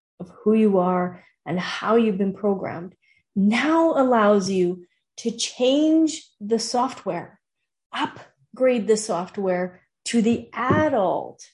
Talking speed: 115 wpm